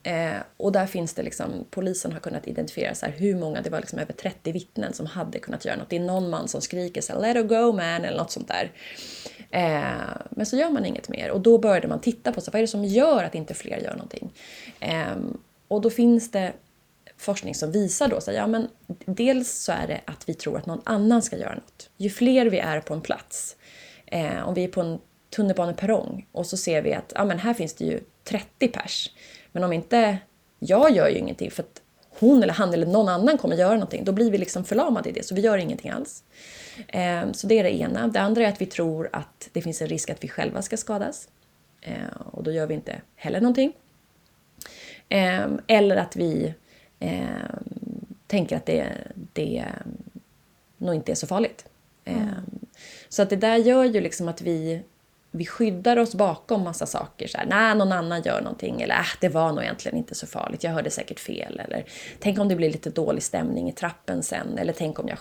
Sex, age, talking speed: female, 20-39, 220 wpm